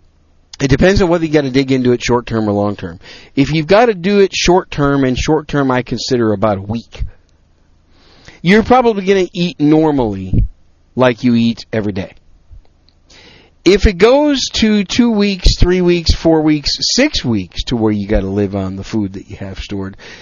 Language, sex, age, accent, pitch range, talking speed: English, male, 50-69, American, 105-155 Hz, 185 wpm